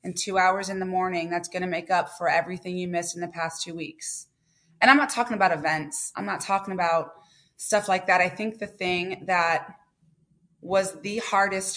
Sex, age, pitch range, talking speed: female, 20-39, 165-200 Hz, 210 wpm